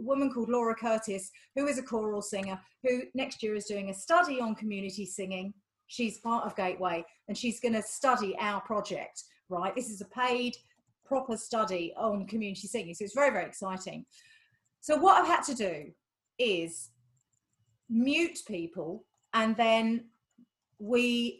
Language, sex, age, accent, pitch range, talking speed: English, female, 40-59, British, 210-315 Hz, 160 wpm